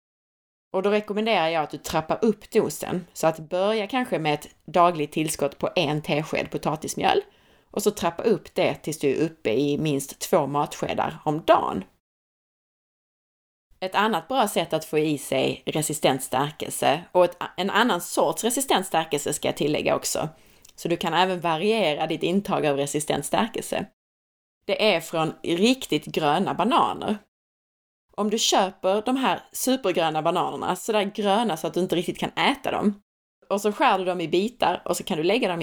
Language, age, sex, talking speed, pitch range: Swedish, 30-49, female, 165 wpm, 155-210 Hz